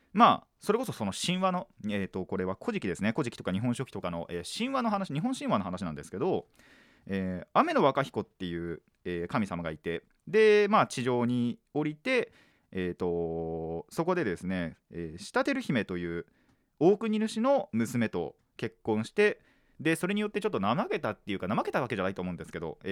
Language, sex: Japanese, male